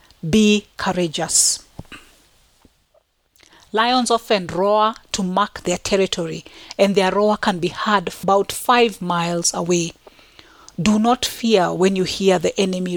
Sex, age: female, 40-59